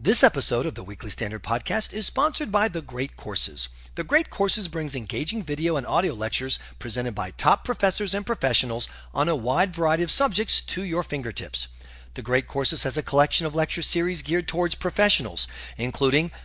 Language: English